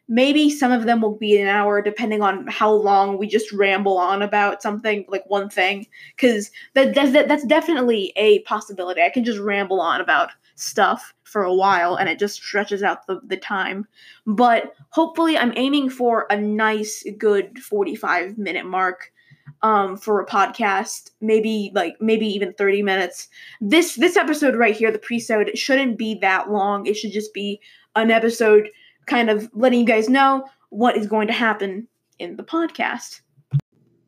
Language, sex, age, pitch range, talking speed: English, female, 20-39, 205-245 Hz, 175 wpm